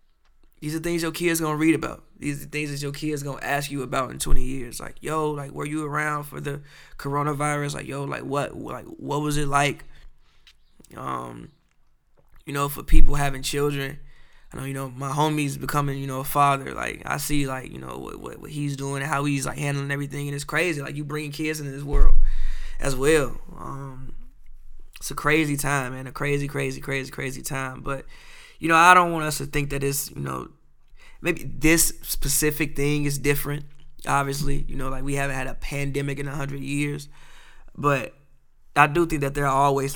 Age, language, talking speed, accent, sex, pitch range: 20-39, English, 205 wpm, American, male, 135-145 Hz